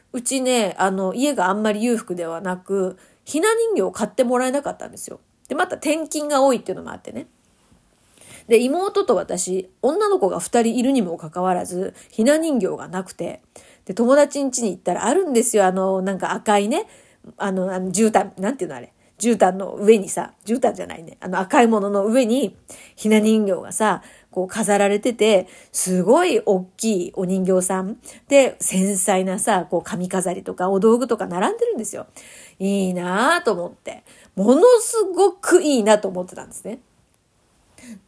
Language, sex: Japanese, female